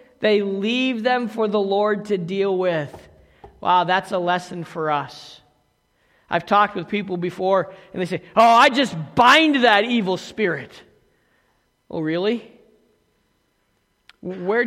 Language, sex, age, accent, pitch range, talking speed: English, male, 50-69, American, 190-260 Hz, 135 wpm